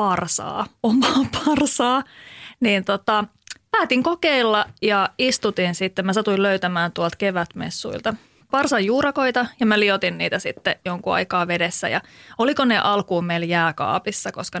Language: Finnish